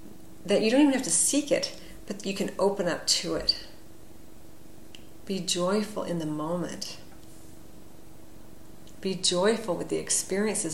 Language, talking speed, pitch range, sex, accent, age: English, 140 wpm, 155-200 Hz, female, American, 40-59